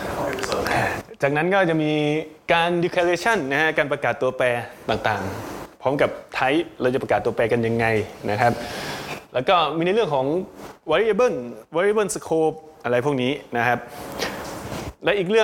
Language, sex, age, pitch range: English, male, 20-39, 120-160 Hz